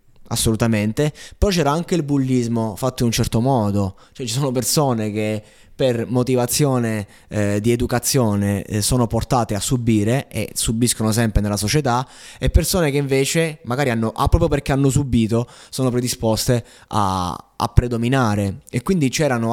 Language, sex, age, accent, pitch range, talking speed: Italian, male, 20-39, native, 110-130 Hz, 150 wpm